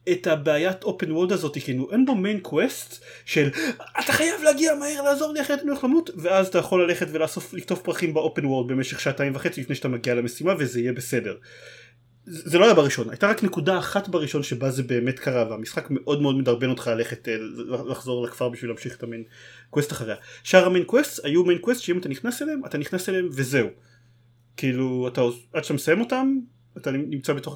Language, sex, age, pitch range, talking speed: Hebrew, male, 30-49, 130-190 Hz, 185 wpm